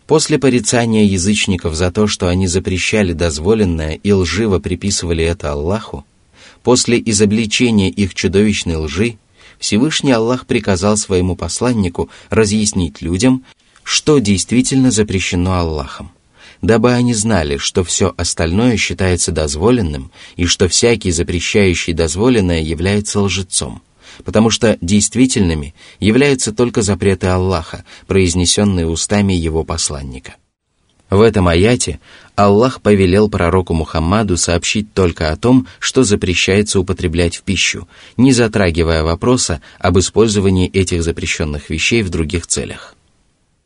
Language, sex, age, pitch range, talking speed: Russian, male, 30-49, 85-110 Hz, 115 wpm